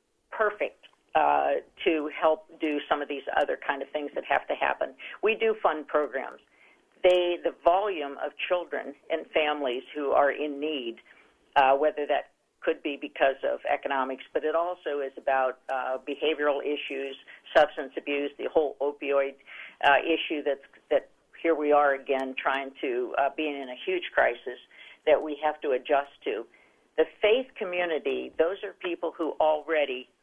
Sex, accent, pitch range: female, American, 135-165 Hz